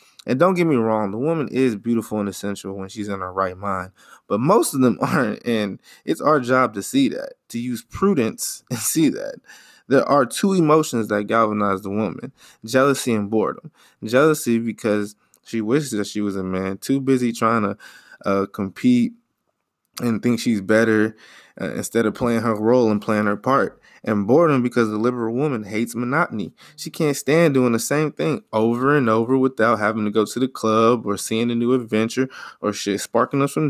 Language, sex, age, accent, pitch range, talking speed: English, male, 20-39, American, 110-135 Hz, 195 wpm